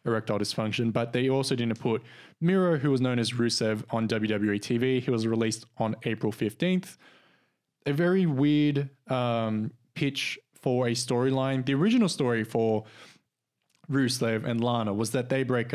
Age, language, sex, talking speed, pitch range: 20-39, English, male, 155 wpm, 115-145 Hz